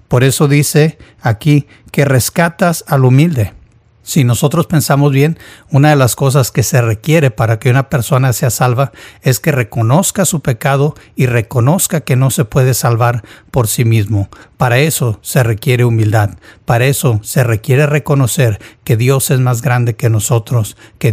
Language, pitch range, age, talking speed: Spanish, 115-145 Hz, 60-79, 165 wpm